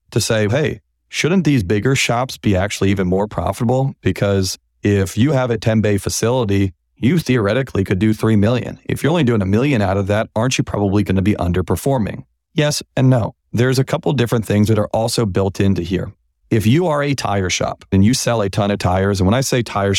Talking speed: 220 wpm